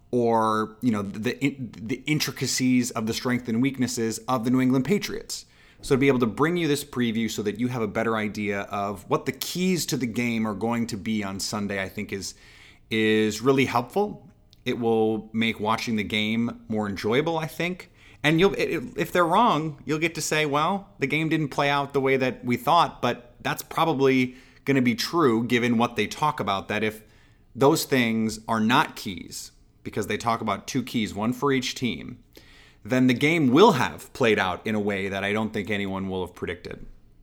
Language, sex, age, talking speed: English, male, 30-49, 205 wpm